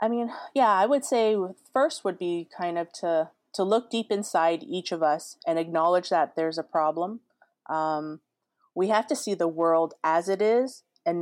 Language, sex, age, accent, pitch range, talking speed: English, female, 30-49, American, 165-210 Hz, 195 wpm